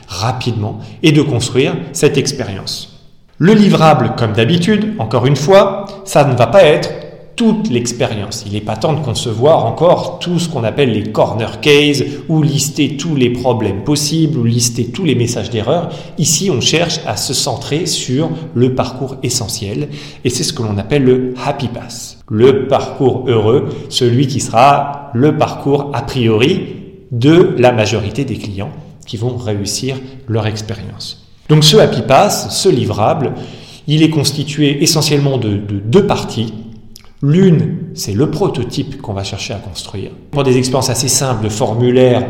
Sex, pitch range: male, 110-145 Hz